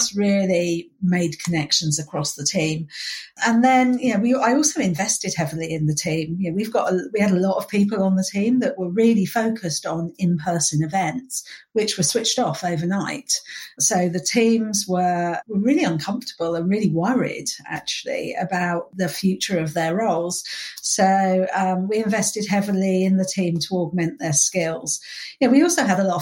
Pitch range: 180-240 Hz